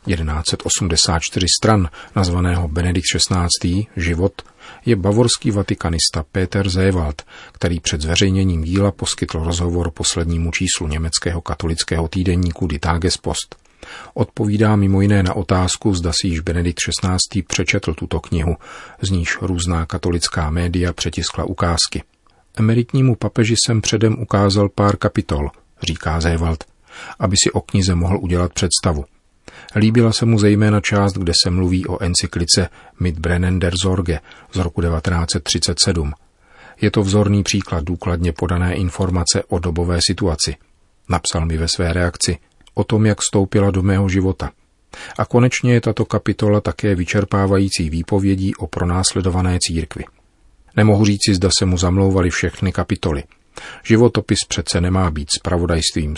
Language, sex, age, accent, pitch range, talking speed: Czech, male, 40-59, native, 85-100 Hz, 130 wpm